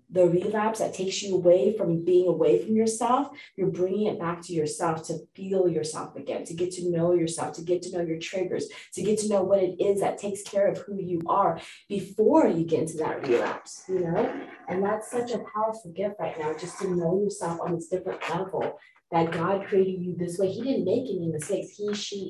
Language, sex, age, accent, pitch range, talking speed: English, female, 20-39, American, 160-195 Hz, 225 wpm